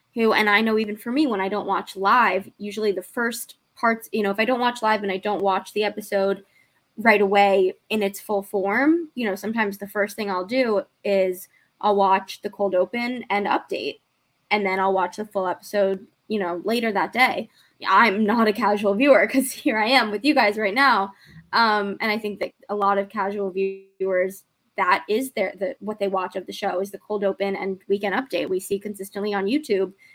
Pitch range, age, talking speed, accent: 195-220 Hz, 20-39, 215 wpm, American